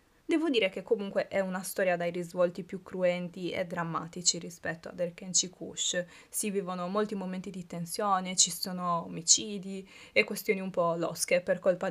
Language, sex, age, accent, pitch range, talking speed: Italian, female, 20-39, native, 175-205 Hz, 165 wpm